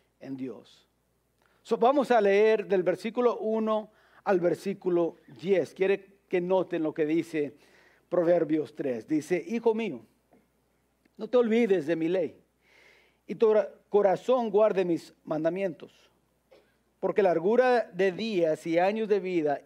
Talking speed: 130 wpm